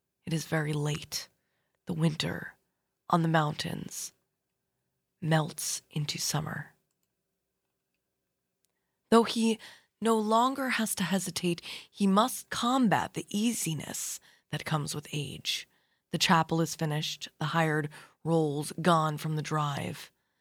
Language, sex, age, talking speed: English, female, 20-39, 115 wpm